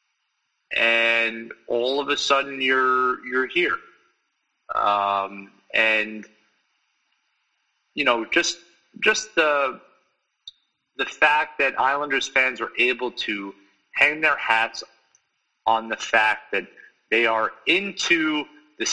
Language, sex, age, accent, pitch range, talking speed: English, male, 30-49, American, 110-135 Hz, 110 wpm